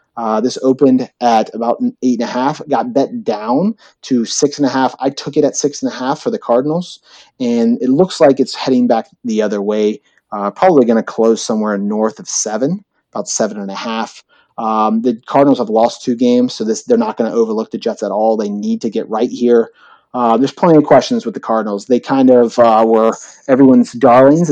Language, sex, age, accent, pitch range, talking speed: English, male, 30-49, American, 110-140 Hz, 225 wpm